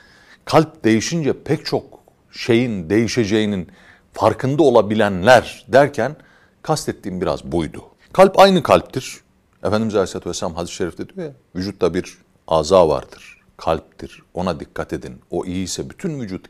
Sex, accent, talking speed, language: male, native, 125 wpm, Turkish